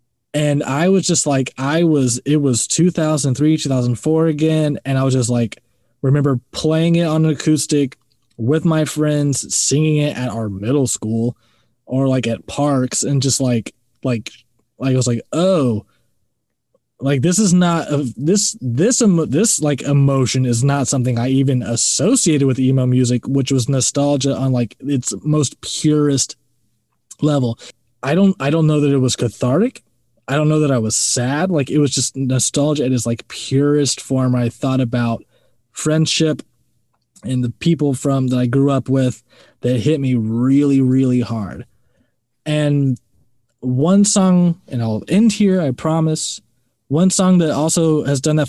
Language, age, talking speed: English, 20-39, 165 wpm